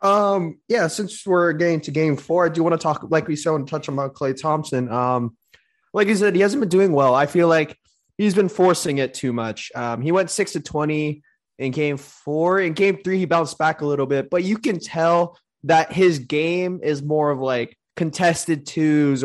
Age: 20-39